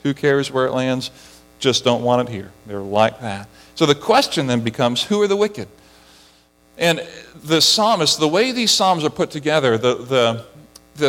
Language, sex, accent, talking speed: English, male, American, 185 wpm